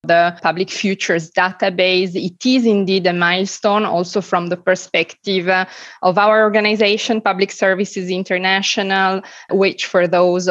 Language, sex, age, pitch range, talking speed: English, female, 20-39, 180-205 Hz, 125 wpm